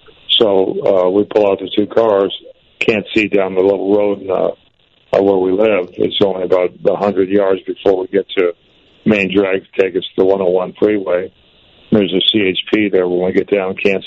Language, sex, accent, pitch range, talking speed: English, male, American, 95-105 Hz, 190 wpm